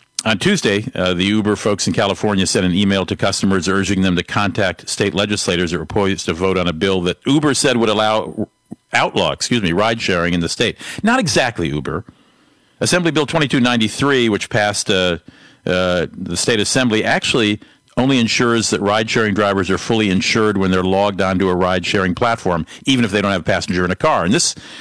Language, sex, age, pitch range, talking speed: English, male, 50-69, 90-110 Hz, 195 wpm